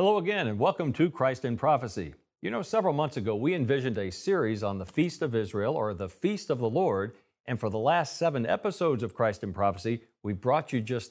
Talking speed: 225 wpm